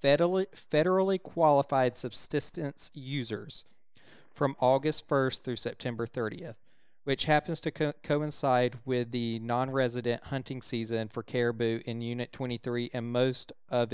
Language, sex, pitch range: English, male, 120-140 Hz